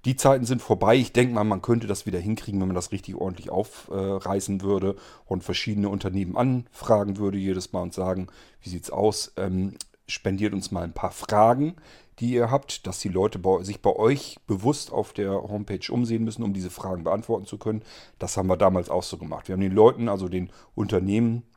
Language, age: German, 40-59